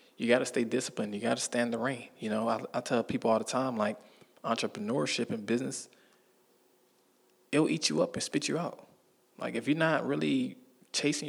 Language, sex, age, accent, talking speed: English, male, 20-39, American, 200 wpm